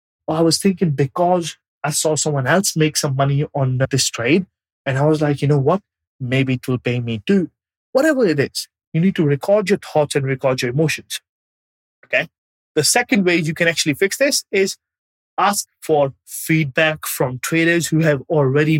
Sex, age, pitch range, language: male, 30-49, 145-200 Hz, English